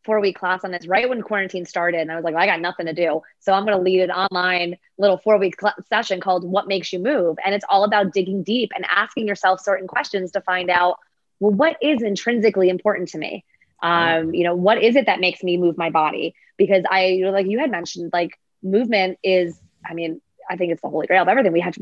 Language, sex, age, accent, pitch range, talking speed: English, female, 20-39, American, 180-220 Hz, 250 wpm